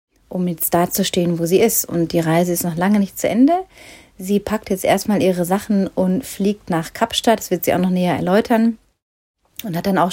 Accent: German